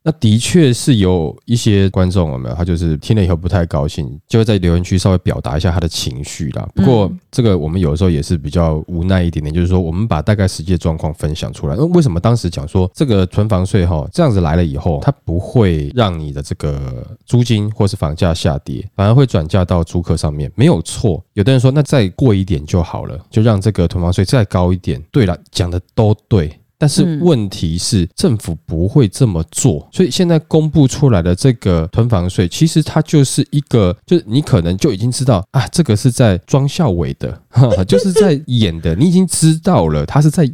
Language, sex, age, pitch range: Chinese, male, 20-39, 90-135 Hz